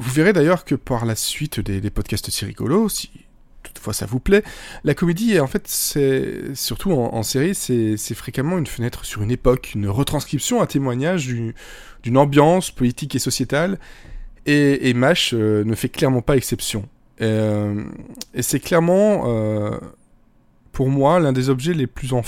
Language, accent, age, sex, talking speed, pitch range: French, French, 20-39, male, 180 wpm, 115-150 Hz